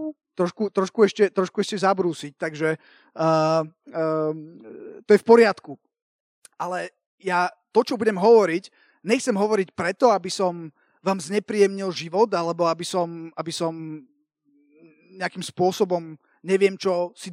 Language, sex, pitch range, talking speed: Slovak, male, 175-240 Hz, 130 wpm